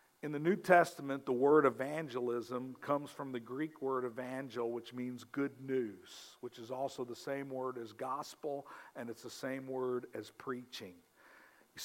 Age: 50-69